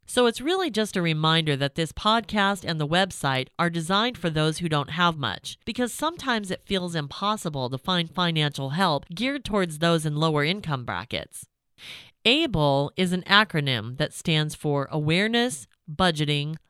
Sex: female